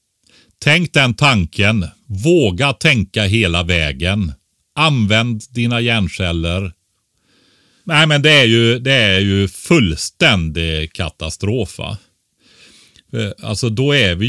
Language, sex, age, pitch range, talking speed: Swedish, male, 40-59, 85-115 Hz, 100 wpm